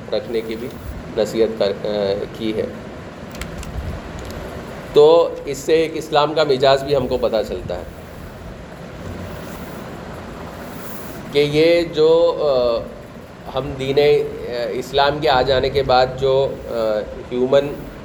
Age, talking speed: 30-49, 110 wpm